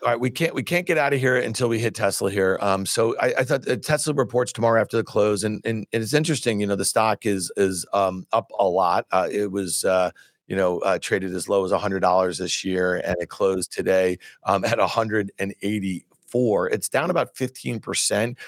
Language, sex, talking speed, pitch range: English, male, 235 wpm, 100-120 Hz